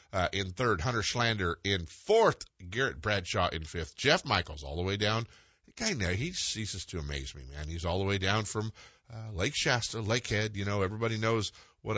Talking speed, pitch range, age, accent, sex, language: 205 wpm, 85-110 Hz, 50-69, American, male, English